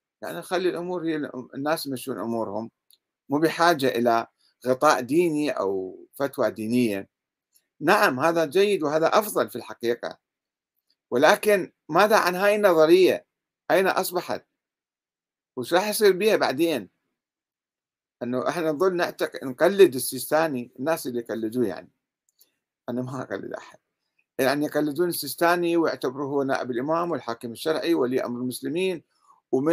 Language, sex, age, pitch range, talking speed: Arabic, male, 50-69, 130-180 Hz, 125 wpm